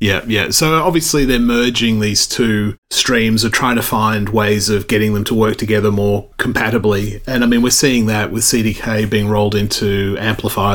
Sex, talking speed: male, 190 wpm